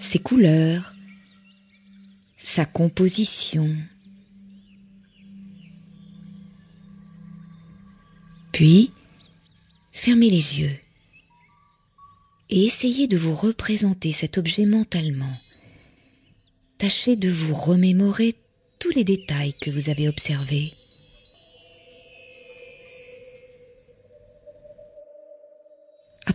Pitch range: 135-195 Hz